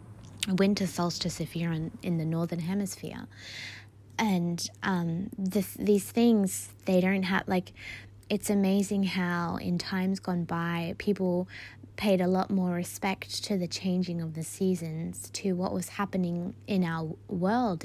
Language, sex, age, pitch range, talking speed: English, female, 20-39, 160-190 Hz, 145 wpm